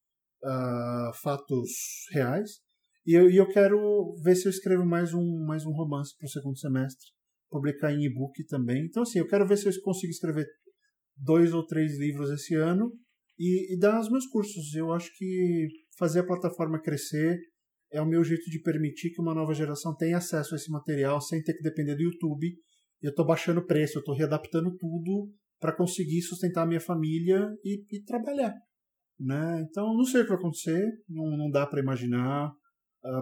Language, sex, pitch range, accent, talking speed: Portuguese, male, 145-185 Hz, Brazilian, 190 wpm